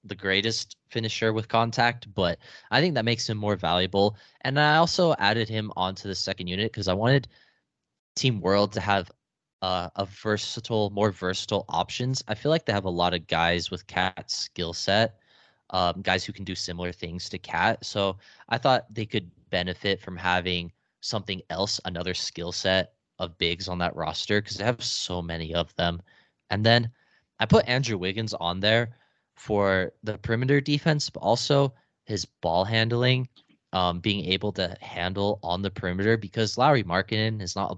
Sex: male